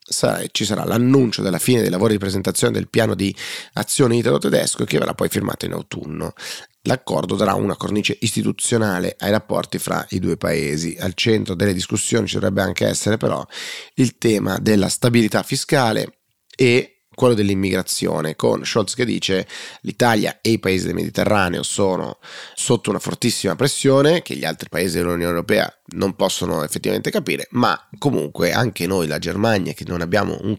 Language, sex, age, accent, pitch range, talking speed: Italian, male, 30-49, native, 90-125 Hz, 165 wpm